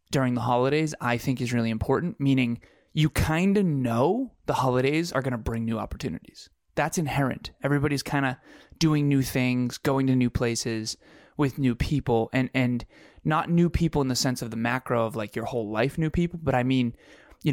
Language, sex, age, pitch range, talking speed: English, male, 20-39, 115-140 Hz, 200 wpm